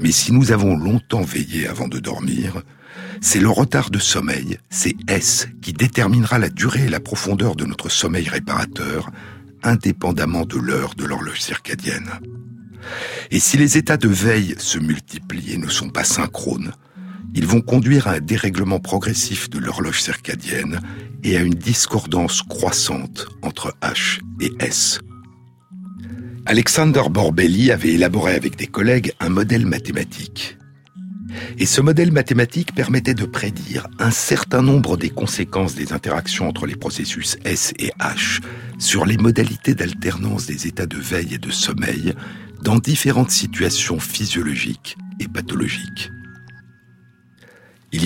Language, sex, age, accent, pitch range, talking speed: French, male, 60-79, French, 90-125 Hz, 140 wpm